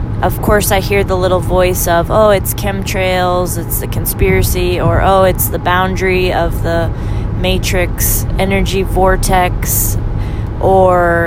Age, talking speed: 20-39, 135 wpm